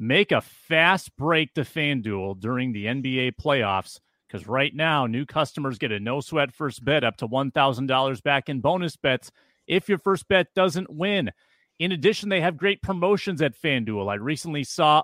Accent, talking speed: American, 175 wpm